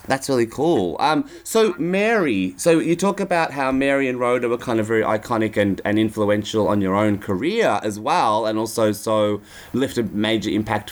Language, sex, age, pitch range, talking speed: English, male, 20-39, 95-120 Hz, 190 wpm